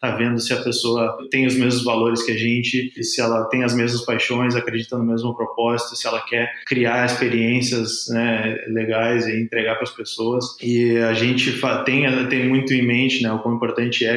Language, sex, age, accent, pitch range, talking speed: Portuguese, male, 20-39, Brazilian, 115-125 Hz, 200 wpm